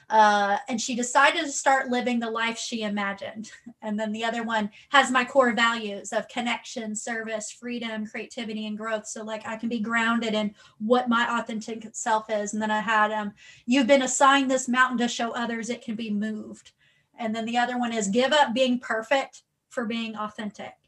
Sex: female